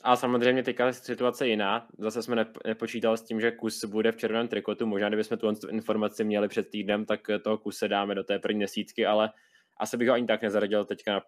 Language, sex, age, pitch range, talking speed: Czech, male, 20-39, 105-115 Hz, 220 wpm